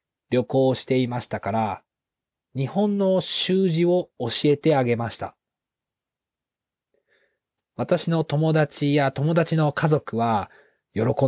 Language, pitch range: Japanese, 115-155 Hz